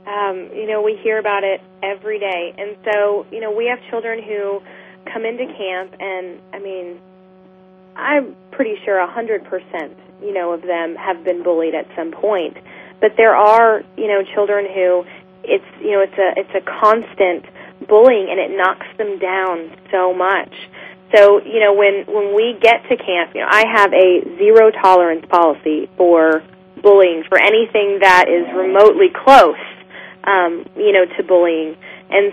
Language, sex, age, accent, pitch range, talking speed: English, female, 20-39, American, 185-215 Hz, 165 wpm